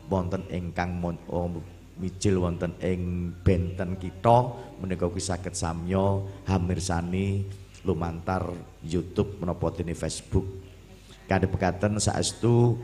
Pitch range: 90-100 Hz